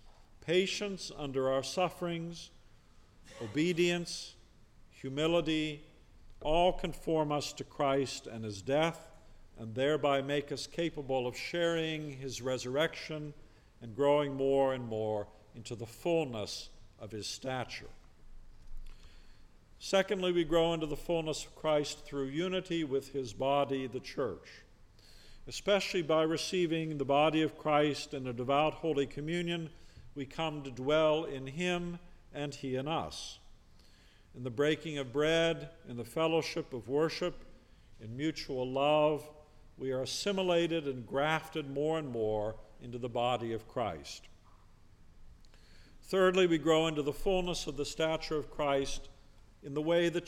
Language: English